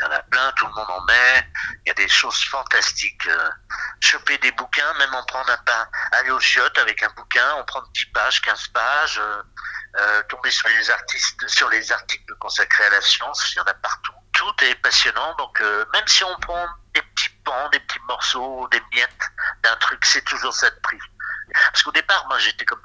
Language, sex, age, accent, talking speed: French, male, 60-79, French, 225 wpm